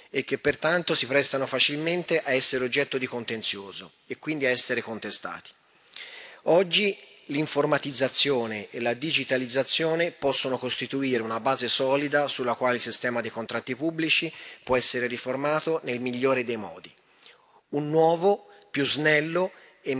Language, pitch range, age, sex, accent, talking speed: Italian, 125-155 Hz, 30-49, male, native, 135 wpm